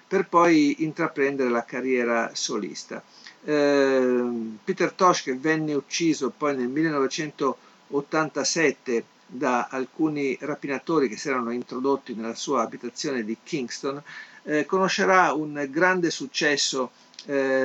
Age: 50-69